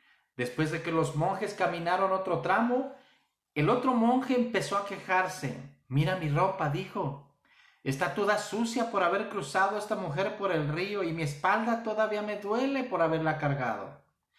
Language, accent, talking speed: Spanish, Mexican, 165 wpm